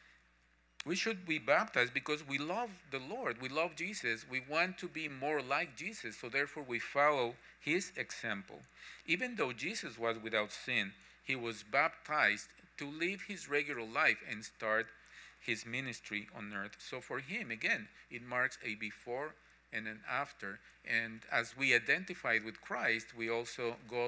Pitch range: 105-135 Hz